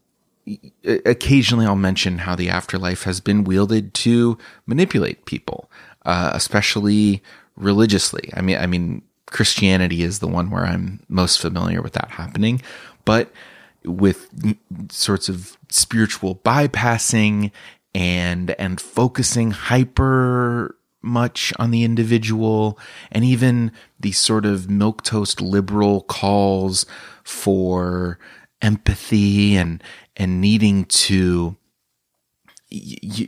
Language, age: English, 30-49